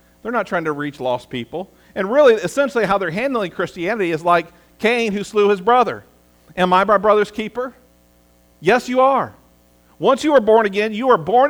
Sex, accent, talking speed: male, American, 195 wpm